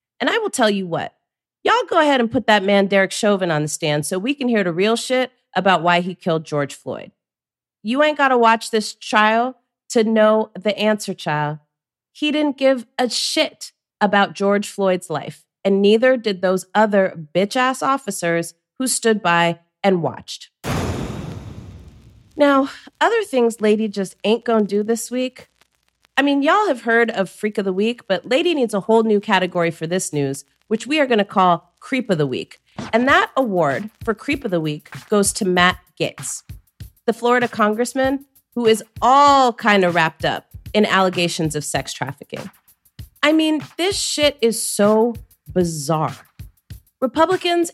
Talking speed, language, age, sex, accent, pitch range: 175 wpm, English, 30-49, female, American, 180-250 Hz